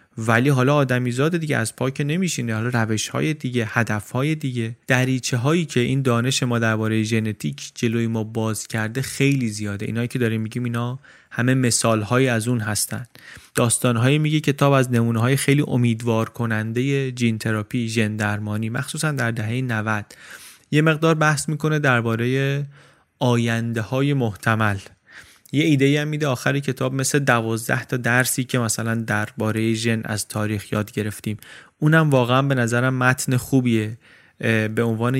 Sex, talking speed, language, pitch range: male, 155 wpm, Persian, 110-130 Hz